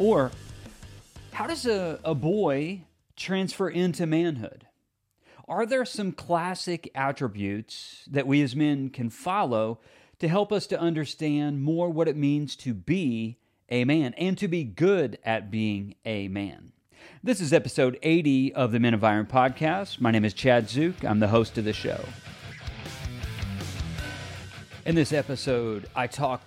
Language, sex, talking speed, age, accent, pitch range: English, male, 150 wpm, 40-59, American, 115-150 Hz